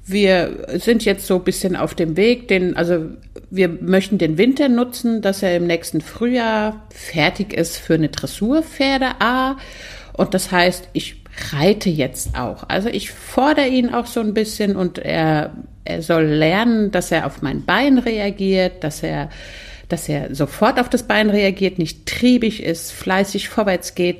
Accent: German